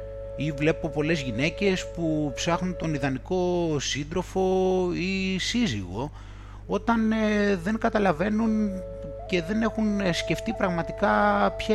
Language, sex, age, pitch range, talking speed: Greek, male, 30-49, 135-210 Hz, 105 wpm